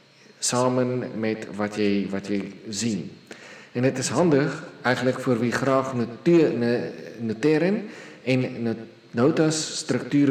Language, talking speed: Dutch, 115 wpm